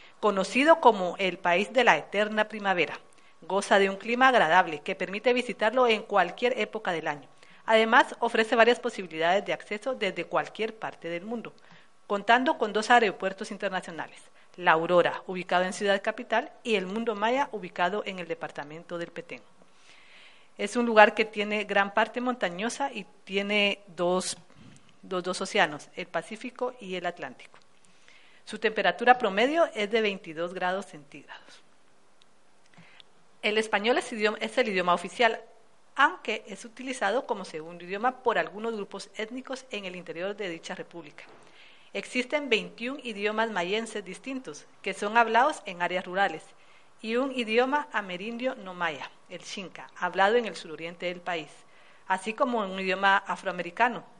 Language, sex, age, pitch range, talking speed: Spanish, female, 40-59, 180-230 Hz, 145 wpm